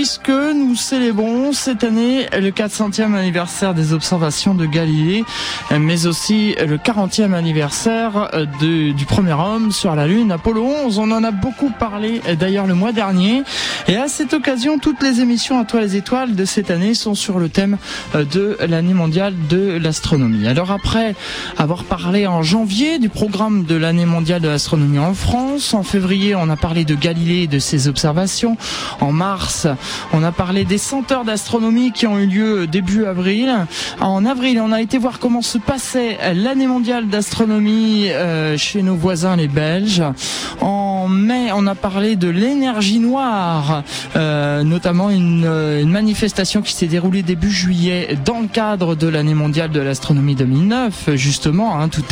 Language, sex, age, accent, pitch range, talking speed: French, male, 20-39, French, 170-225 Hz, 165 wpm